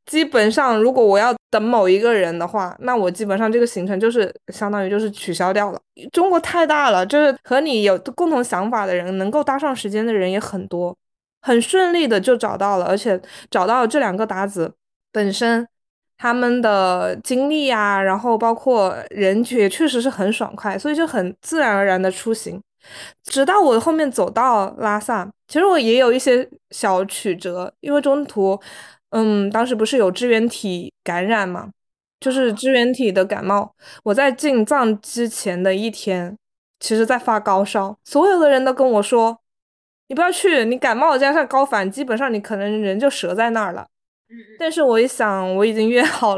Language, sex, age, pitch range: Chinese, female, 20-39, 195-255 Hz